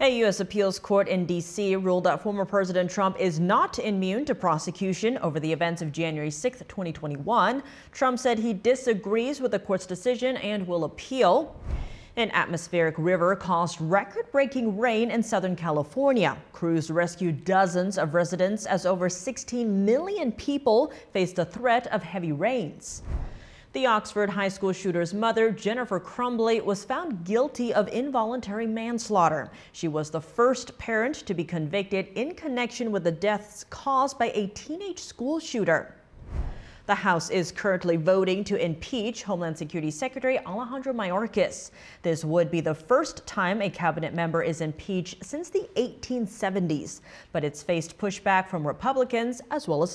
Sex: female